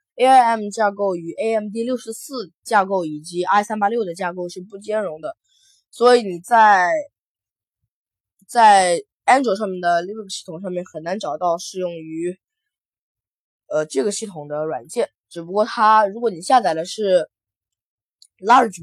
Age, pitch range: 20-39, 165-215 Hz